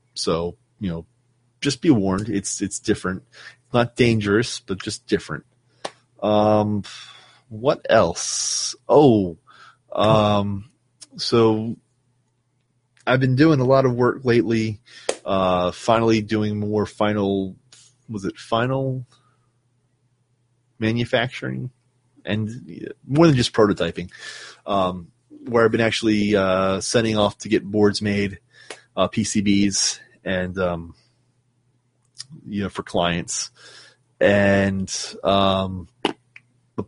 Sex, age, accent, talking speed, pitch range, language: male, 30-49, American, 105 wpm, 100-125 Hz, English